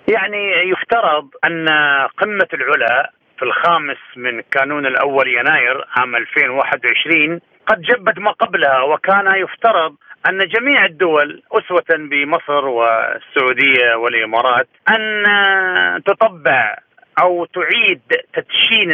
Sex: male